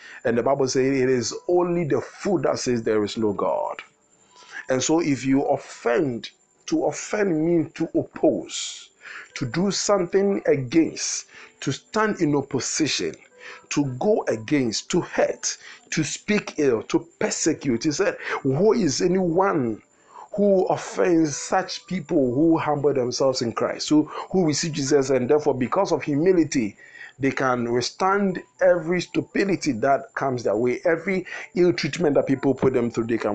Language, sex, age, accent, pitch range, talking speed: English, male, 50-69, Nigerian, 130-170 Hz, 155 wpm